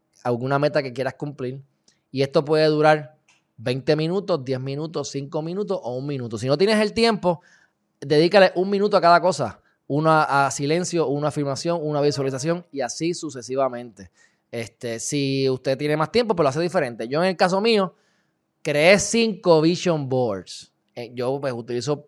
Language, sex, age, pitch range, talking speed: Spanish, male, 20-39, 125-170 Hz, 165 wpm